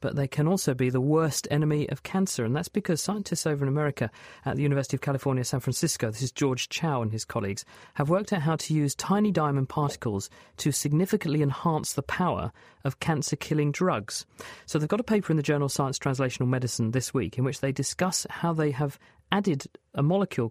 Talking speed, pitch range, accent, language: 210 wpm, 130-160 Hz, British, English